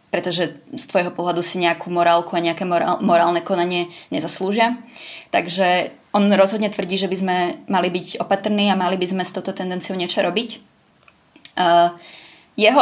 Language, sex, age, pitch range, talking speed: Czech, female, 20-39, 180-215 Hz, 150 wpm